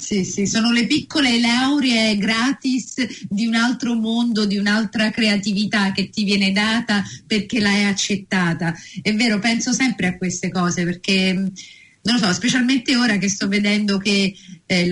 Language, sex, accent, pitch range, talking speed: Italian, female, native, 195-235 Hz, 160 wpm